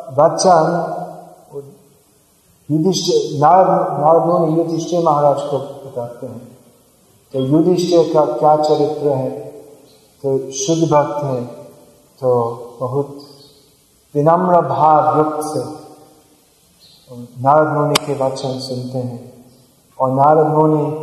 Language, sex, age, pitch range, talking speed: Hindi, male, 40-59, 140-165 Hz, 75 wpm